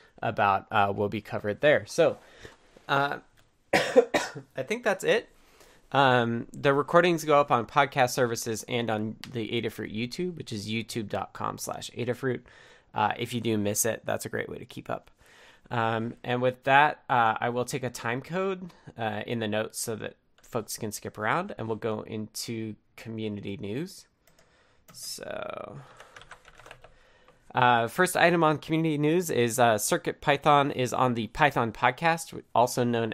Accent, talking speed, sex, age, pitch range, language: American, 160 wpm, male, 20-39, 110-140 Hz, English